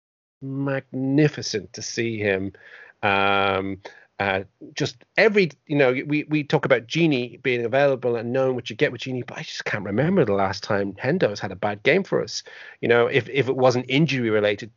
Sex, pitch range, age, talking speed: male, 105-135 Hz, 30-49, 190 wpm